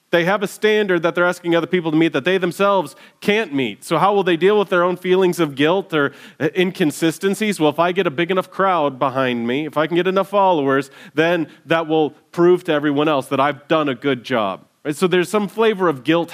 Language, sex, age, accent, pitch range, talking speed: English, male, 30-49, American, 140-190 Hz, 235 wpm